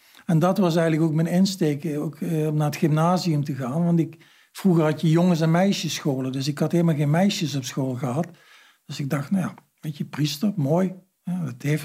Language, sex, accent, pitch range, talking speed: Dutch, male, Dutch, 140-170 Hz, 200 wpm